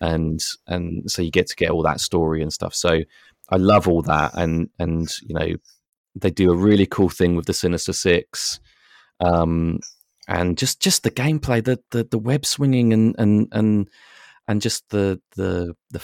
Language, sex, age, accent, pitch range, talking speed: English, male, 30-49, British, 90-115 Hz, 185 wpm